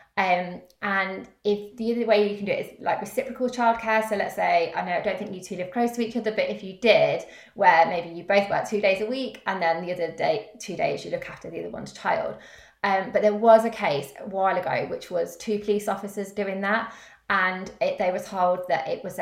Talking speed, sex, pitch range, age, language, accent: 250 wpm, female, 170-215 Hz, 20-39, English, British